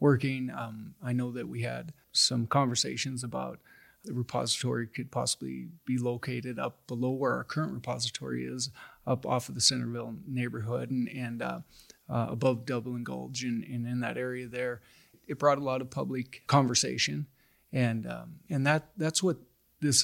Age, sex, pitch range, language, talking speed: 30-49, male, 120-135 Hz, English, 170 wpm